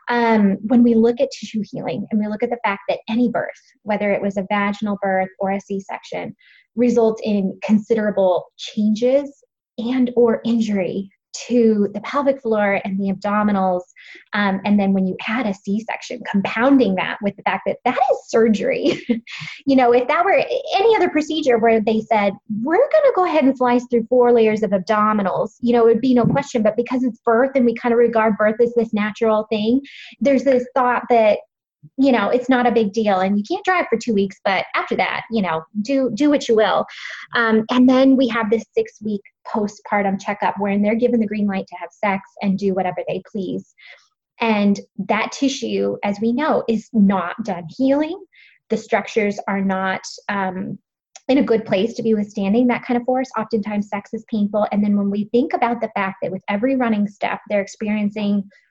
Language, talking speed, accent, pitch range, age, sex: English, 200 wpm, American, 205-245 Hz, 20-39, female